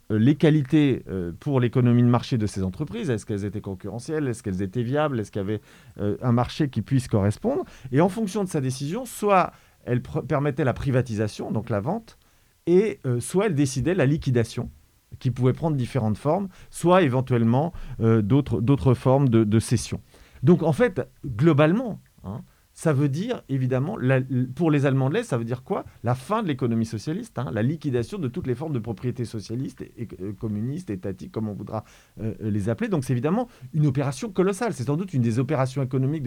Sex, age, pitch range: male, 40-59, 115-155 Hz